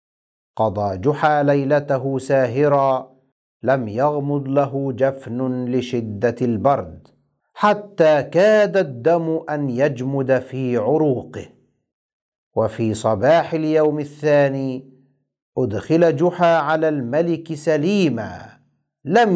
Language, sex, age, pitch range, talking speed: Arabic, male, 50-69, 135-180 Hz, 85 wpm